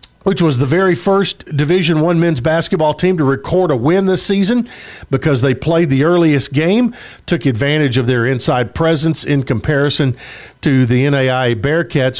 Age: 50-69